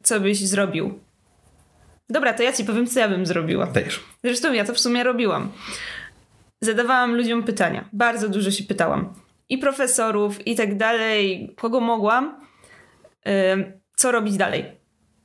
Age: 20-39